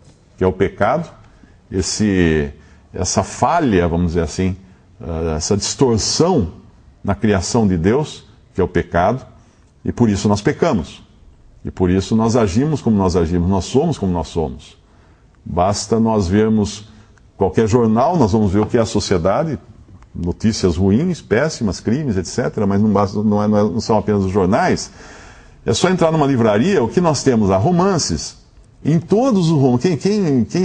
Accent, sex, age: Brazilian, male, 50-69